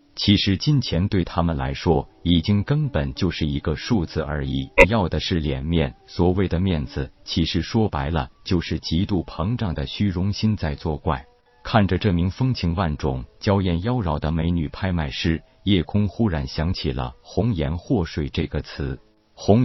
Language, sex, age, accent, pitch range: Chinese, male, 50-69, native, 80-105 Hz